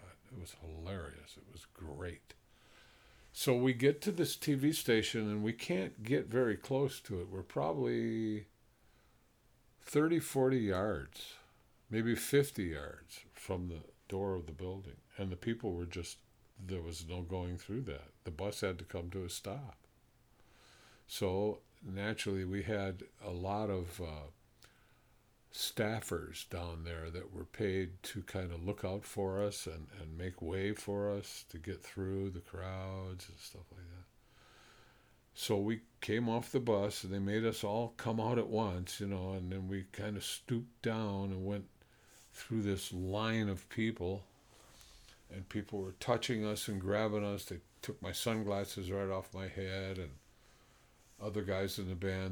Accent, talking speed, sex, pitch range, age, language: American, 165 wpm, male, 95-110 Hz, 50-69, English